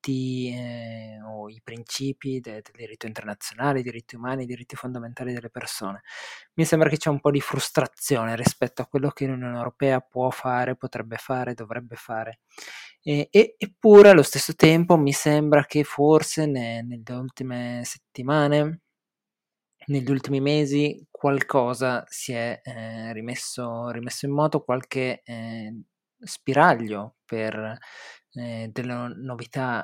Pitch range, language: 115-140 Hz, Italian